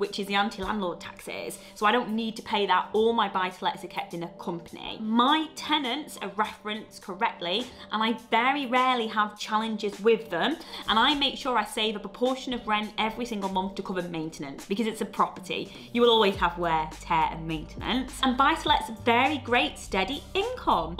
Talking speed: 195 wpm